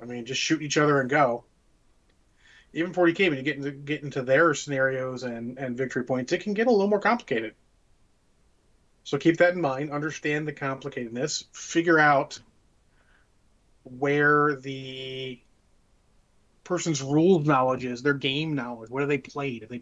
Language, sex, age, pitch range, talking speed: English, male, 30-49, 130-155 Hz, 165 wpm